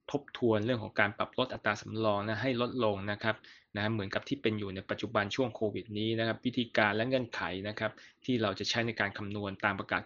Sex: male